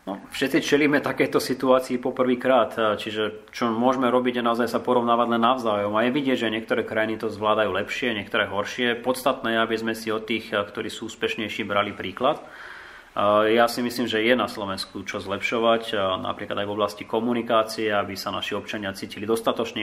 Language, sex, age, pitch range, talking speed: Slovak, male, 30-49, 105-120 Hz, 180 wpm